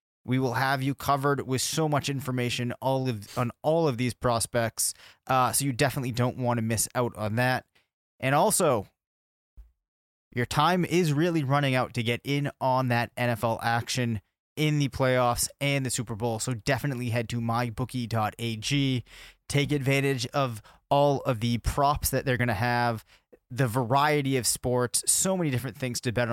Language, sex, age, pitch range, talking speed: English, male, 20-39, 120-140 Hz, 175 wpm